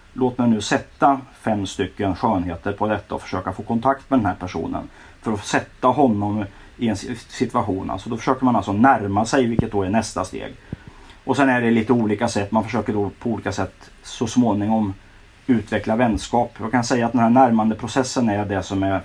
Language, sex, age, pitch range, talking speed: English, male, 30-49, 95-120 Hz, 200 wpm